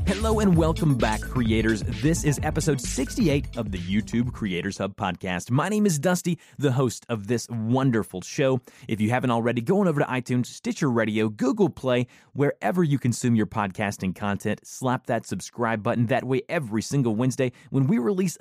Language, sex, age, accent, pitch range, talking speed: English, male, 30-49, American, 115-145 Hz, 185 wpm